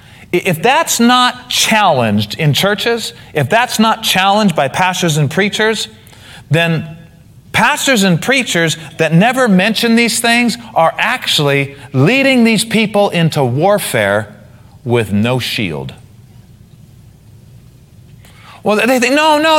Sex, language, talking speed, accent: male, English, 115 wpm, American